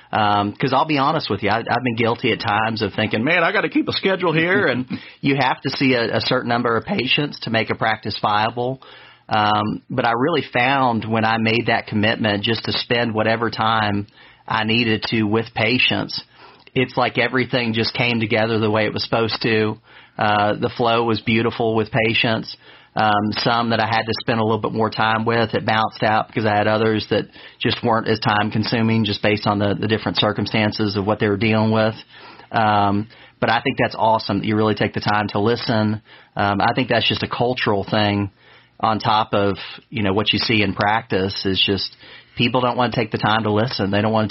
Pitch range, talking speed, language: 105-115 Hz, 220 wpm, English